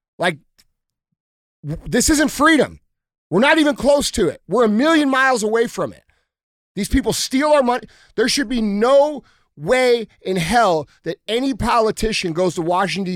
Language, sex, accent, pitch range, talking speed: English, male, American, 185-250 Hz, 160 wpm